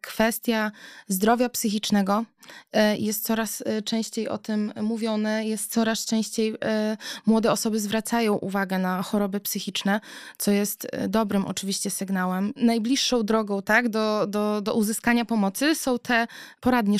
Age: 20-39